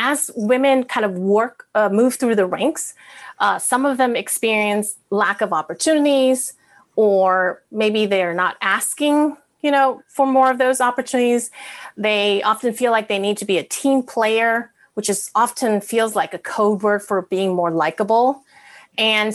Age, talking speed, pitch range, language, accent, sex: 30-49, 165 wpm, 205-260 Hz, English, American, female